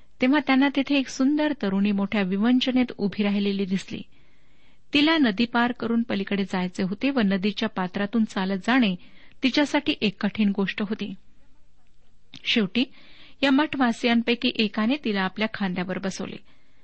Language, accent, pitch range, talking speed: Marathi, native, 200-265 Hz, 130 wpm